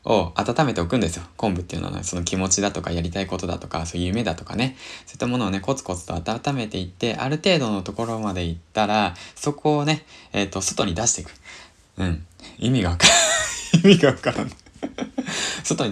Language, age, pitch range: Japanese, 20-39, 90-130 Hz